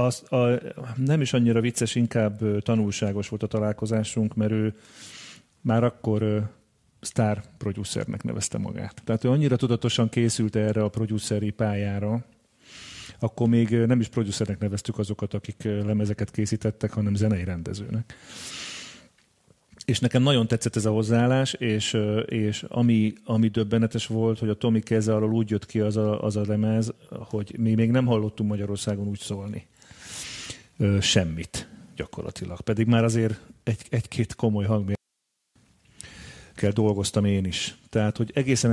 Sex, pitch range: male, 105-115 Hz